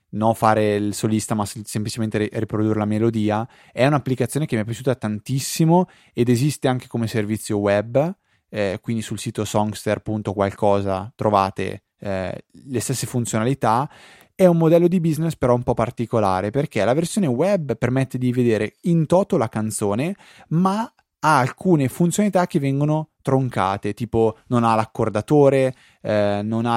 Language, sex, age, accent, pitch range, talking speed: Italian, male, 20-39, native, 105-130 Hz, 150 wpm